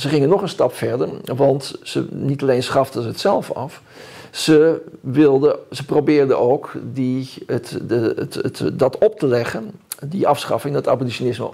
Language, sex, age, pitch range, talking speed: Dutch, male, 50-69, 130-170 Hz, 165 wpm